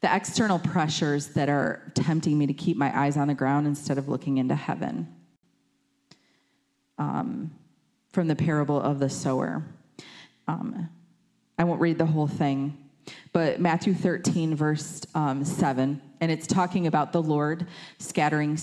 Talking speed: 150 wpm